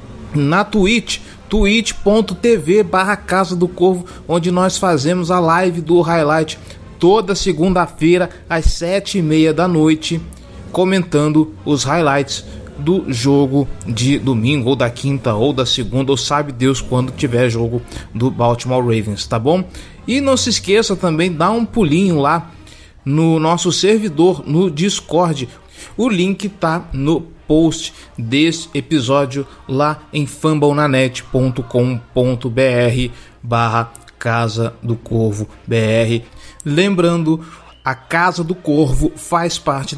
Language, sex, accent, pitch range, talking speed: Portuguese, male, Brazilian, 130-170 Hz, 125 wpm